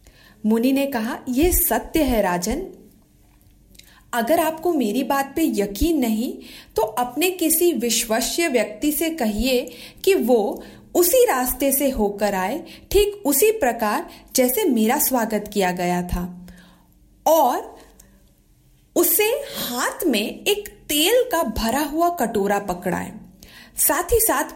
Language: Hindi